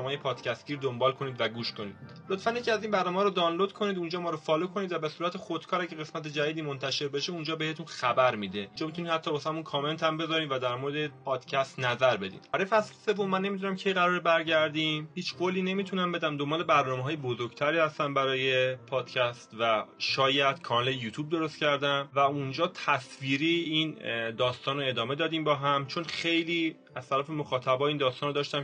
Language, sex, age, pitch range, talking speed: Persian, male, 30-49, 130-160 Hz, 190 wpm